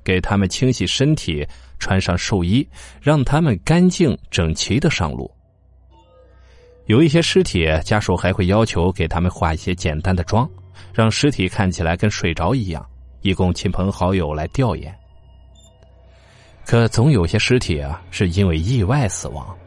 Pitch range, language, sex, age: 80-105 Hz, Chinese, male, 20-39